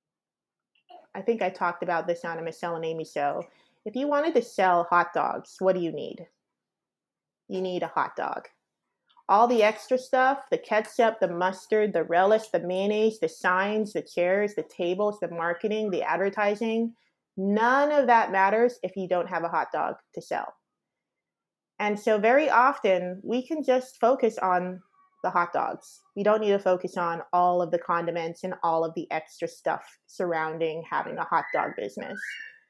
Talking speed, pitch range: 175 wpm, 180-240 Hz